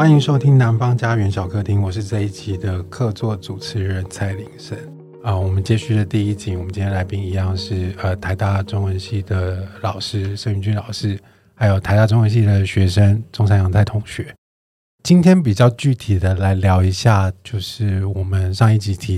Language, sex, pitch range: Chinese, male, 95-115 Hz